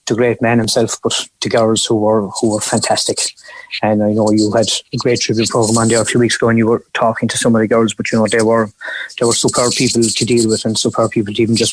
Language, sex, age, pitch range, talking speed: English, male, 20-39, 110-115 Hz, 275 wpm